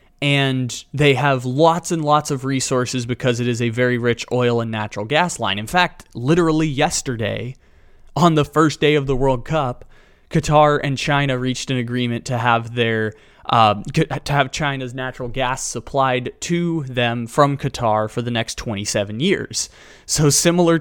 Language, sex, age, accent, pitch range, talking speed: English, male, 20-39, American, 115-140 Hz, 165 wpm